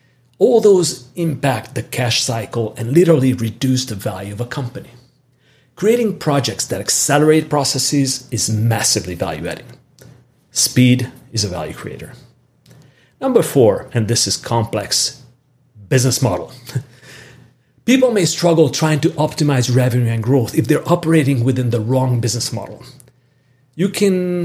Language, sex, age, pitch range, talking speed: English, male, 40-59, 120-145 Hz, 135 wpm